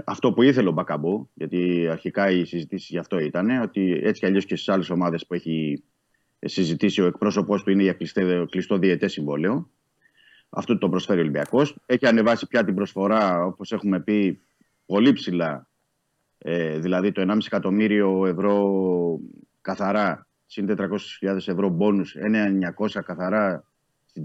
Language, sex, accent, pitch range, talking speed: Greek, male, native, 90-105 Hz, 145 wpm